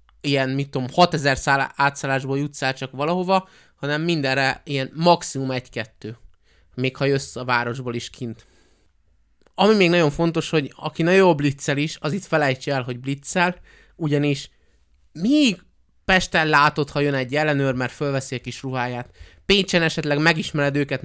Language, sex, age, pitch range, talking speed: Hungarian, male, 20-39, 135-175 Hz, 150 wpm